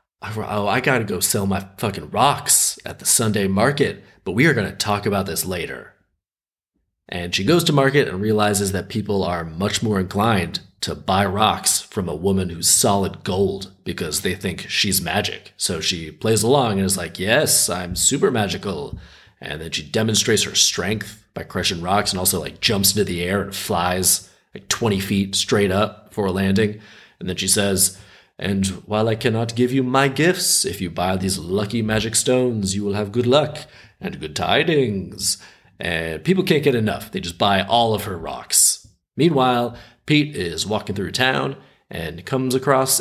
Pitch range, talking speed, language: 95-120 Hz, 185 wpm, English